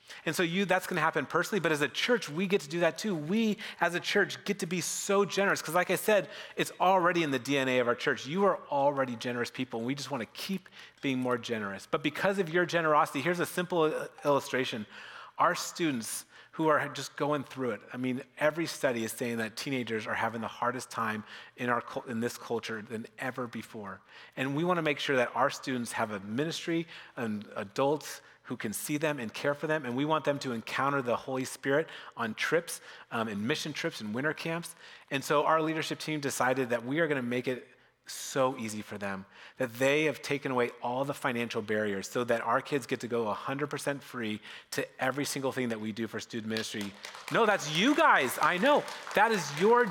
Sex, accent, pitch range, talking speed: male, American, 125-170 Hz, 220 wpm